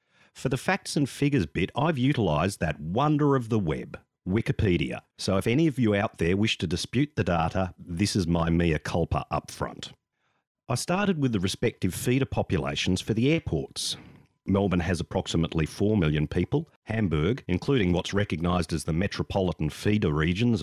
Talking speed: 170 wpm